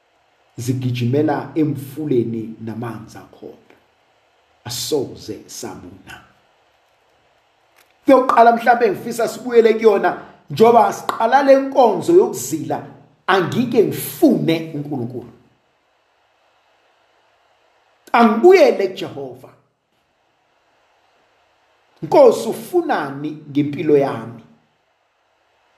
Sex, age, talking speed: male, 50-69, 70 wpm